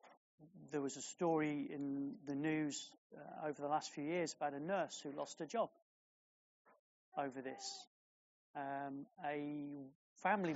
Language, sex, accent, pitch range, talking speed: English, male, British, 135-170 Hz, 140 wpm